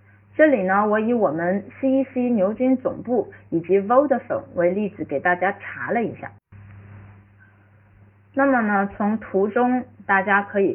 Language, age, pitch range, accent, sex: Chinese, 30-49, 155-255 Hz, native, female